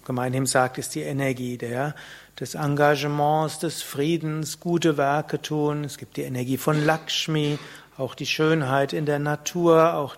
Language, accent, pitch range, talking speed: German, German, 145-170 Hz, 155 wpm